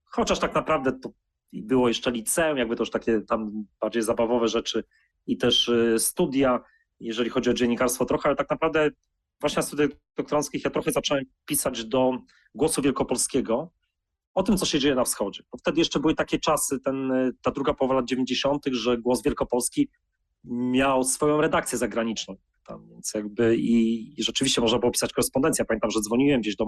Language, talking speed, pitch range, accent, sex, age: Polish, 180 wpm, 125-150 Hz, native, male, 30-49